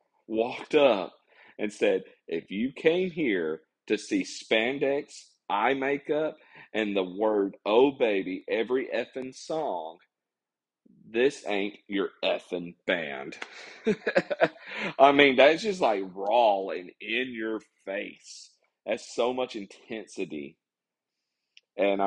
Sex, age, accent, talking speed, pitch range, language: male, 40-59, American, 110 wpm, 95-140 Hz, English